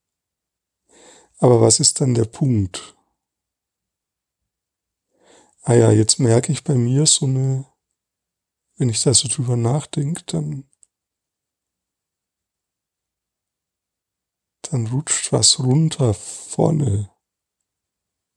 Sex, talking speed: male, 90 wpm